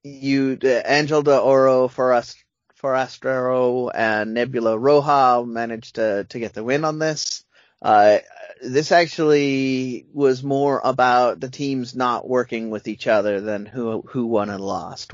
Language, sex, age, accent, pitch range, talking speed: English, male, 30-49, American, 110-140 Hz, 155 wpm